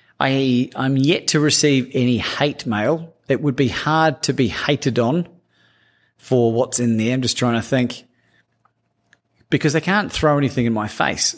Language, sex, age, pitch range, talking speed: English, male, 30-49, 105-135 Hz, 170 wpm